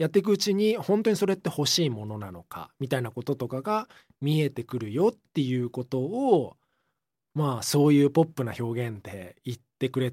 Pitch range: 115-175 Hz